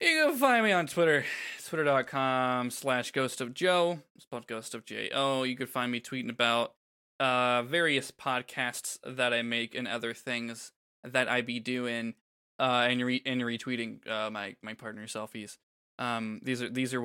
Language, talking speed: English, 180 wpm